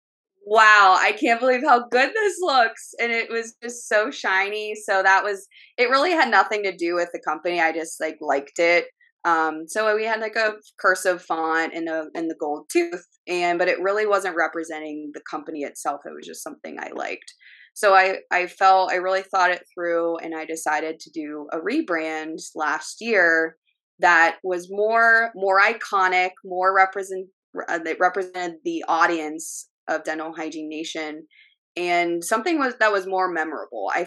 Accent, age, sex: American, 20-39, female